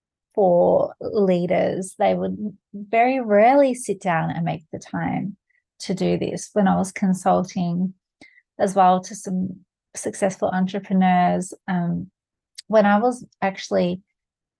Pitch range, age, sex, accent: 180-215 Hz, 30-49, female, Australian